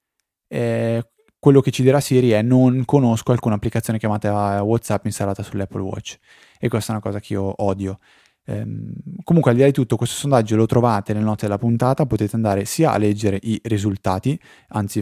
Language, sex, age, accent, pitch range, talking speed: Italian, male, 20-39, native, 105-130 Hz, 190 wpm